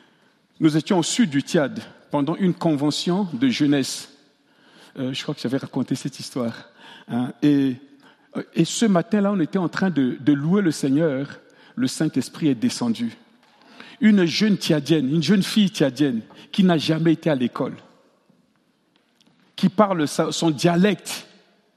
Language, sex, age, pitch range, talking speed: French, male, 50-69, 170-280 Hz, 150 wpm